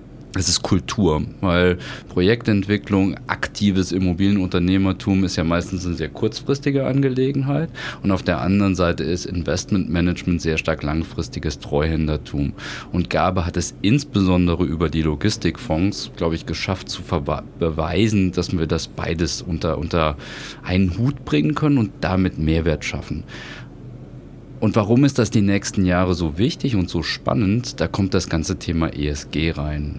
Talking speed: 140 wpm